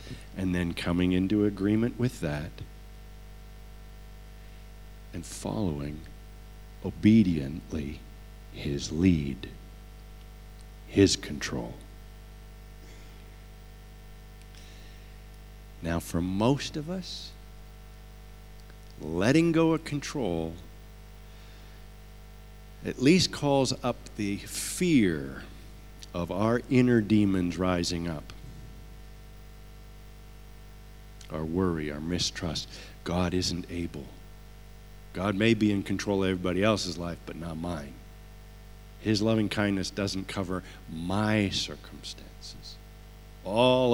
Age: 50-69